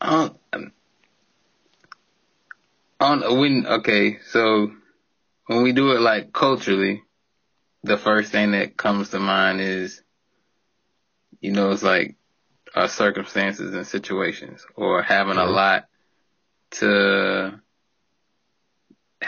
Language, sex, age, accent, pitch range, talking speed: English, male, 20-39, American, 100-110 Hz, 100 wpm